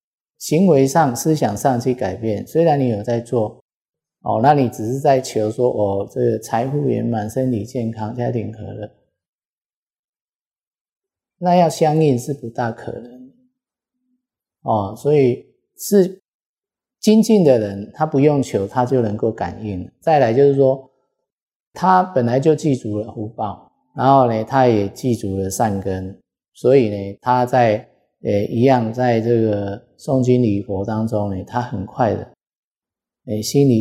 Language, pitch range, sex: Chinese, 105-140 Hz, male